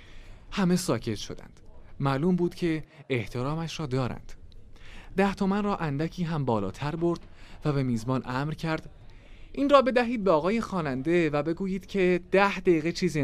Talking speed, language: 155 wpm, Persian